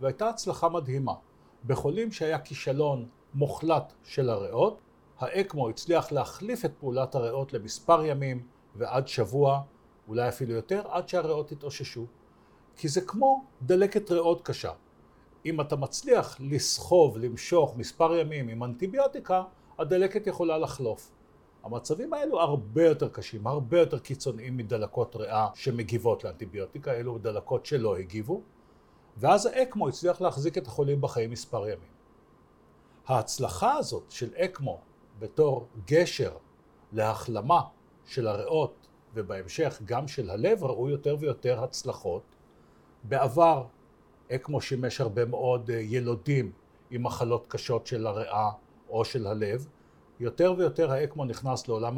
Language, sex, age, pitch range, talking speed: Hebrew, male, 50-69, 120-165 Hz, 120 wpm